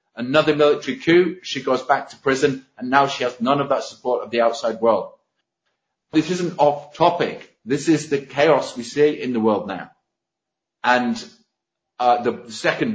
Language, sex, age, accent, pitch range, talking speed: English, male, 40-59, British, 115-145 Hz, 175 wpm